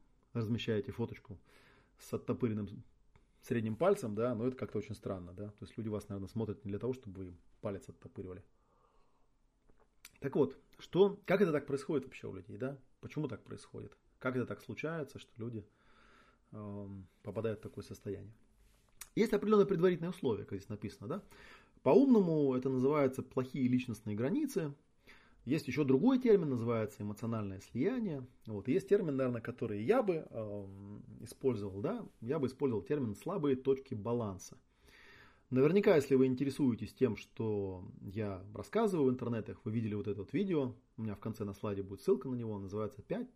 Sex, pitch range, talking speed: male, 105-140 Hz, 160 wpm